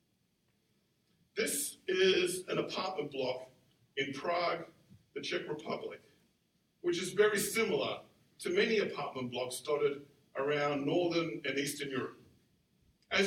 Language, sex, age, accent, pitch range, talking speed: English, male, 50-69, American, 165-225 Hz, 115 wpm